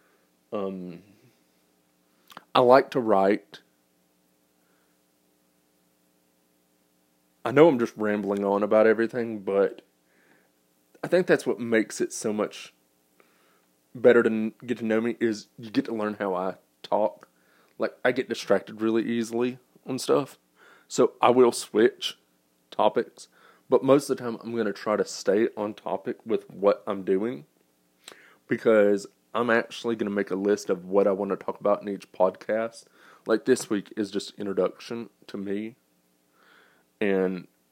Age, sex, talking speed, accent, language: 20-39, male, 150 wpm, American, English